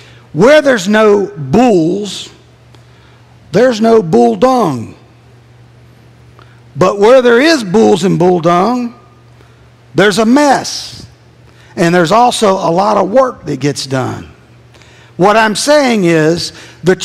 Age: 50-69